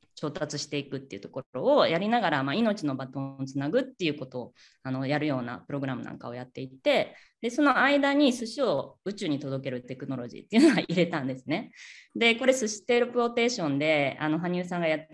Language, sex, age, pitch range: Japanese, female, 20-39, 140-210 Hz